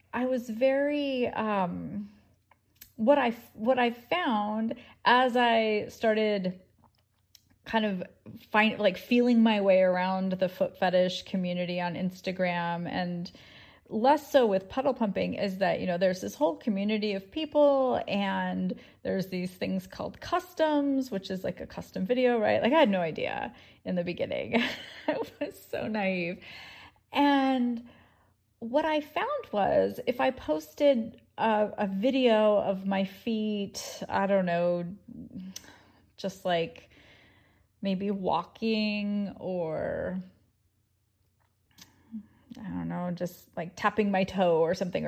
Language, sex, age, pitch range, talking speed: English, female, 30-49, 180-230 Hz, 130 wpm